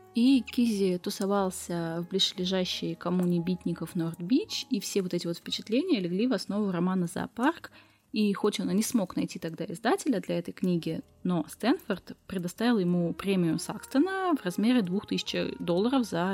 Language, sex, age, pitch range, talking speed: Russian, female, 20-39, 175-245 Hz, 155 wpm